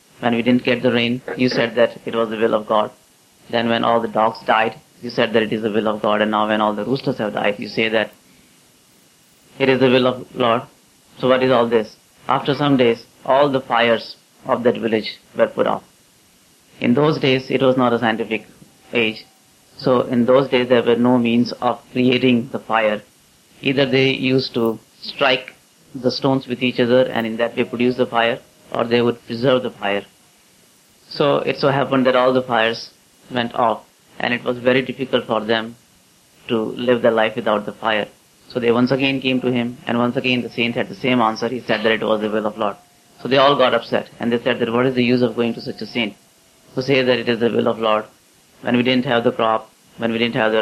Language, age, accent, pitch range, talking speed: English, 30-49, Indian, 115-125 Hz, 230 wpm